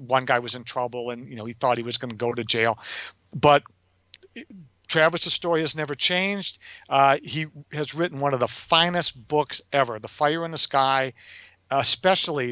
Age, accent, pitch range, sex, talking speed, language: 50-69, American, 120-150 Hz, male, 185 wpm, English